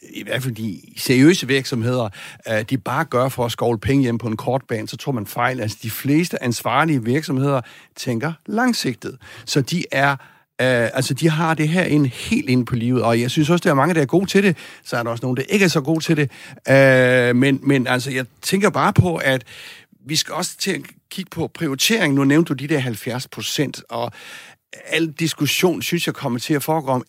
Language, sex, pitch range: Danish, male, 120-155 Hz